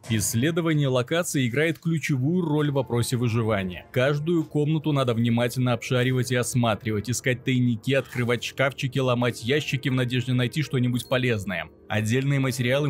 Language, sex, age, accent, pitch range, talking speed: Russian, male, 20-39, native, 115-140 Hz, 130 wpm